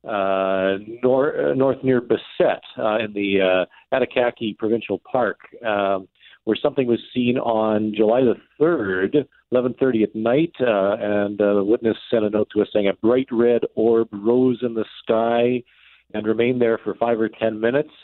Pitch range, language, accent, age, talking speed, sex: 110-130 Hz, English, American, 50-69, 175 wpm, male